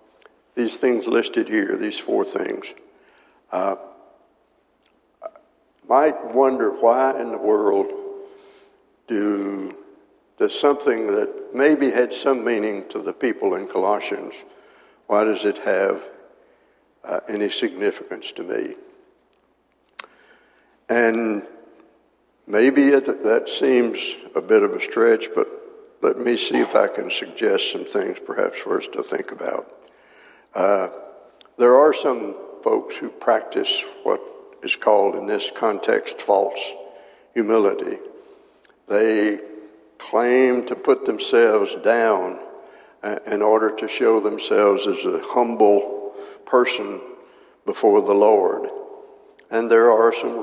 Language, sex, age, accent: English, male, 60-79, American